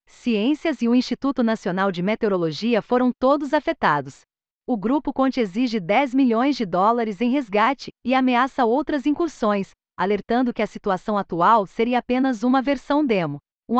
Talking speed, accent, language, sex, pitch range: 150 wpm, Brazilian, Portuguese, female, 215-270 Hz